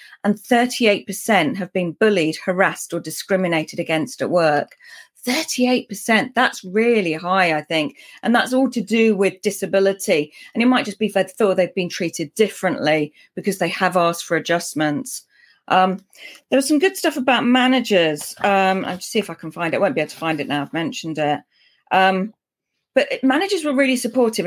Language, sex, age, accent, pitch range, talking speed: English, female, 40-59, British, 185-255 Hz, 185 wpm